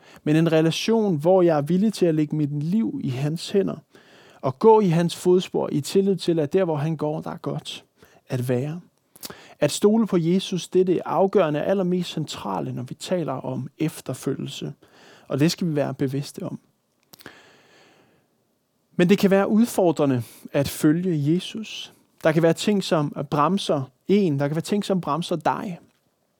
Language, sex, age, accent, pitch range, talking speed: Danish, male, 20-39, native, 150-190 Hz, 175 wpm